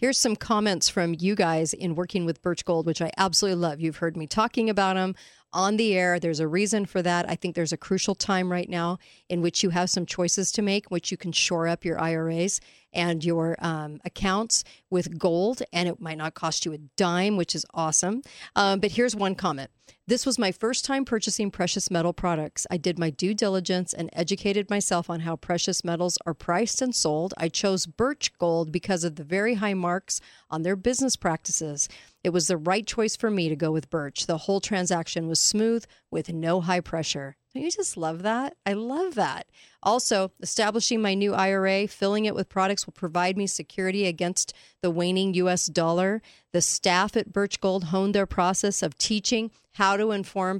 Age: 40-59